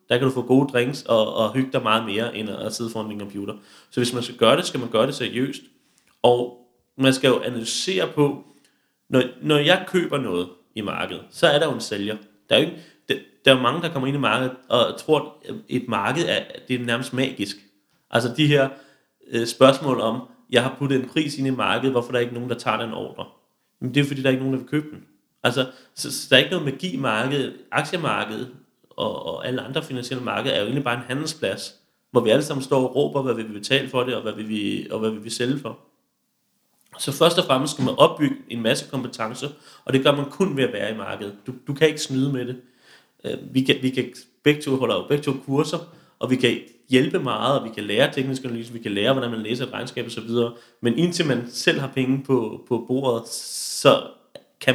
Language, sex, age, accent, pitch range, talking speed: Danish, male, 30-49, native, 115-140 Hz, 240 wpm